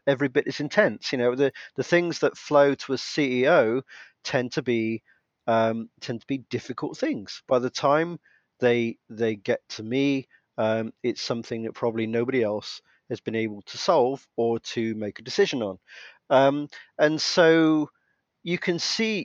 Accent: British